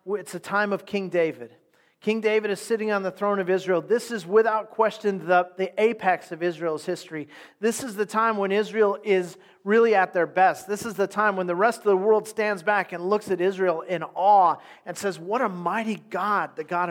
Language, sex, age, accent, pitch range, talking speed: English, male, 40-59, American, 175-220 Hz, 220 wpm